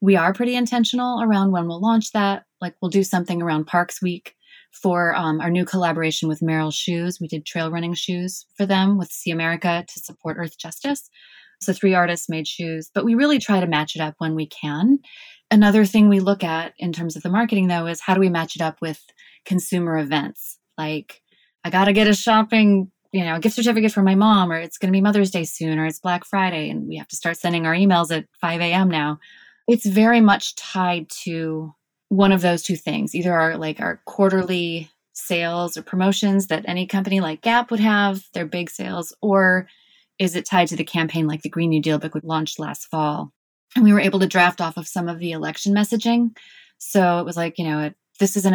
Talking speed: 220 wpm